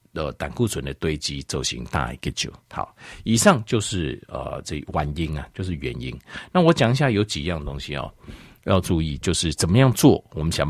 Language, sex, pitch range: Chinese, male, 75-120 Hz